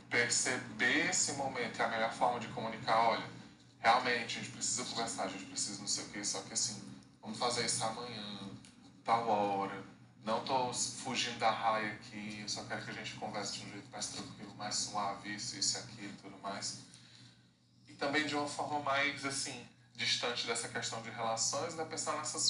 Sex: male